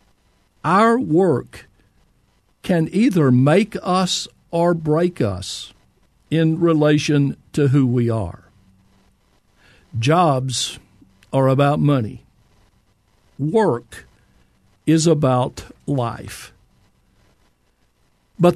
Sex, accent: male, American